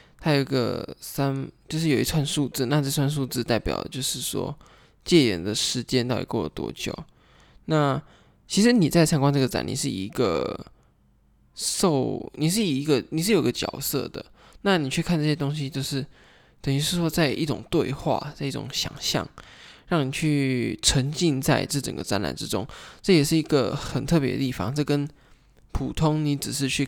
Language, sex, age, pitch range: Chinese, male, 20-39, 125-155 Hz